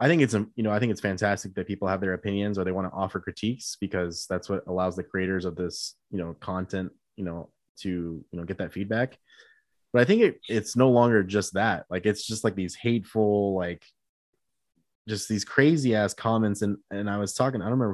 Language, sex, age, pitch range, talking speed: English, male, 20-39, 95-115 Hz, 230 wpm